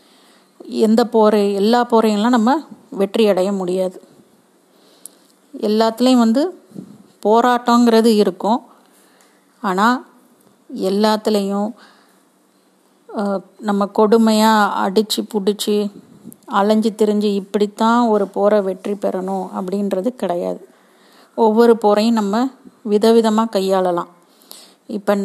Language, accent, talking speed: Tamil, native, 80 wpm